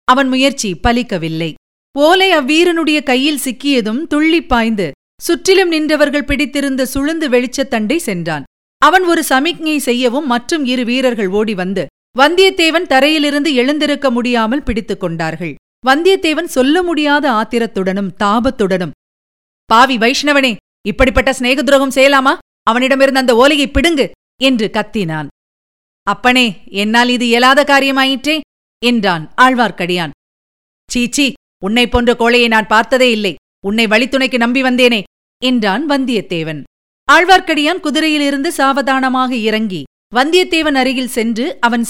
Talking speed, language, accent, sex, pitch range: 110 wpm, Tamil, native, female, 215-285 Hz